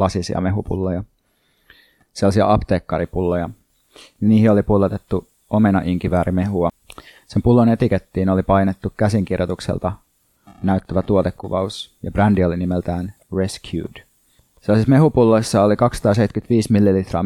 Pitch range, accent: 90-105 Hz, native